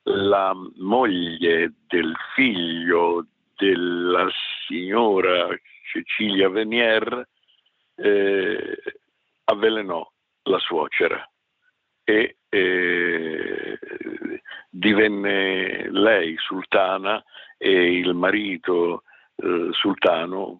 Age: 60-79